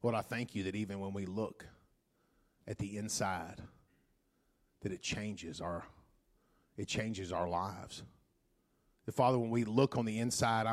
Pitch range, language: 130-175 Hz, English